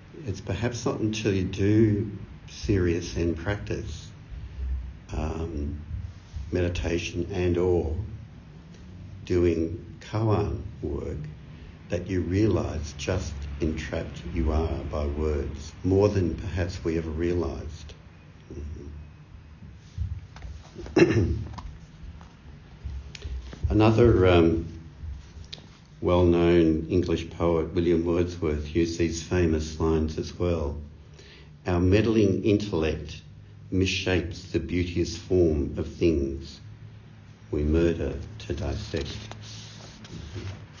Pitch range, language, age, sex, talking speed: 80-100 Hz, English, 60-79, male, 85 wpm